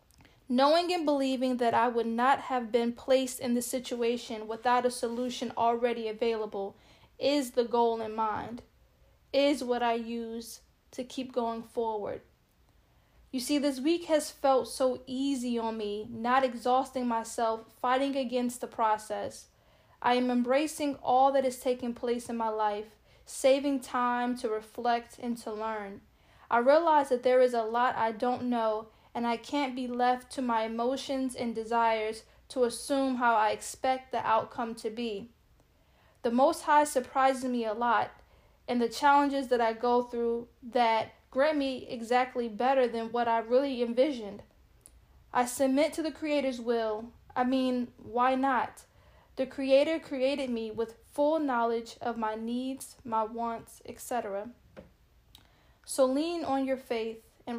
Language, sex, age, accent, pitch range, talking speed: English, female, 10-29, American, 230-265 Hz, 155 wpm